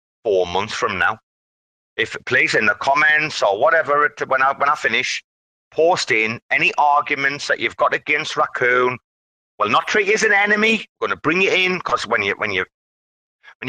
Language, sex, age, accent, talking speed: English, male, 30-49, British, 195 wpm